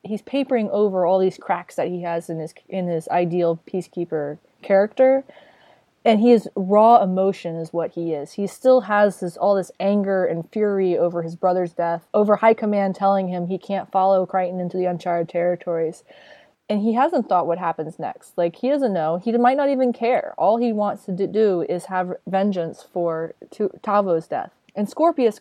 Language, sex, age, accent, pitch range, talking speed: English, female, 20-39, American, 175-215 Hz, 185 wpm